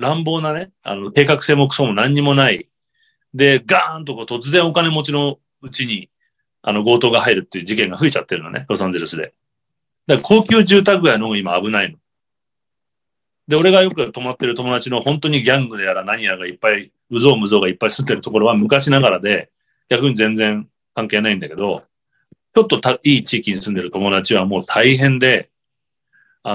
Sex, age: male, 40-59